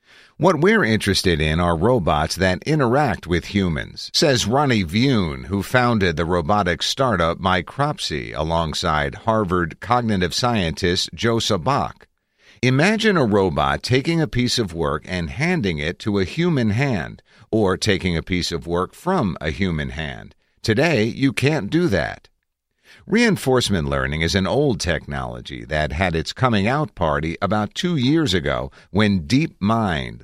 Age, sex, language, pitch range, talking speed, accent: 50-69, male, English, 85-115 Hz, 145 wpm, American